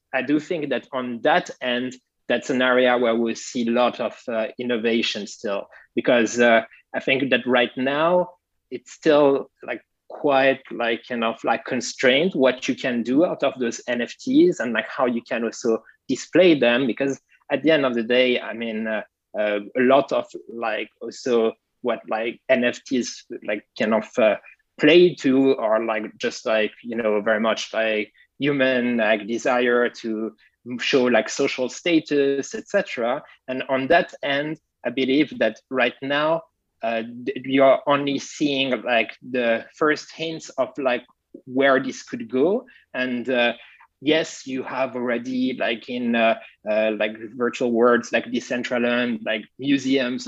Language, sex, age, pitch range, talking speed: English, male, 20-39, 115-135 Hz, 160 wpm